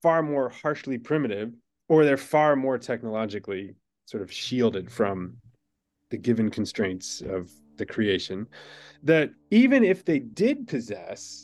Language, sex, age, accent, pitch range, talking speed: English, male, 20-39, American, 105-150 Hz, 130 wpm